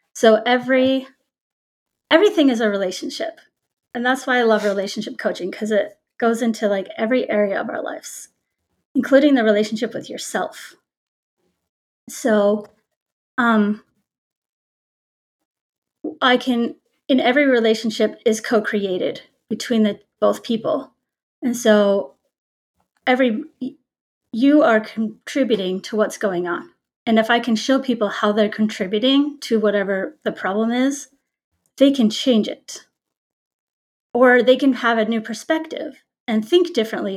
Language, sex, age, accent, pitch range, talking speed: English, female, 30-49, American, 210-255 Hz, 130 wpm